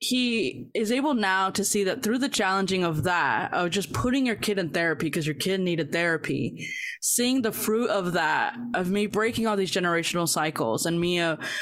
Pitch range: 170-220 Hz